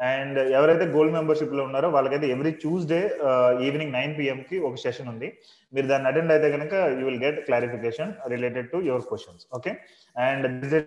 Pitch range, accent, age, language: 125-150 Hz, native, 20-39, Telugu